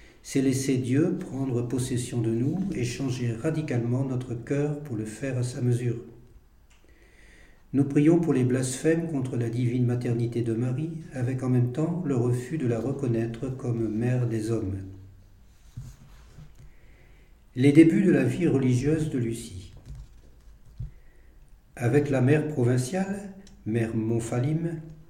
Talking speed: 135 wpm